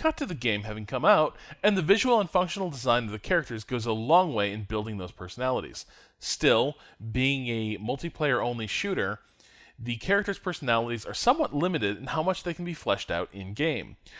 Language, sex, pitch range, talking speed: English, male, 105-150 Hz, 180 wpm